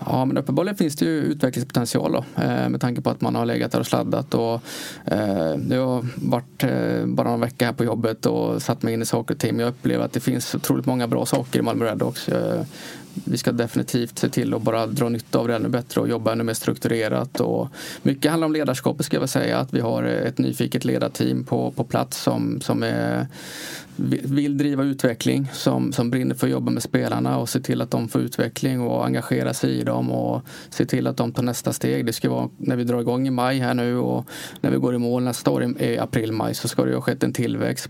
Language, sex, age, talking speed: Swedish, male, 20-39, 240 wpm